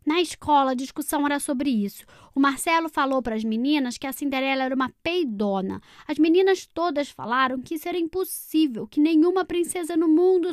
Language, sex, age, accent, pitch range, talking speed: Portuguese, female, 10-29, Brazilian, 210-310 Hz, 180 wpm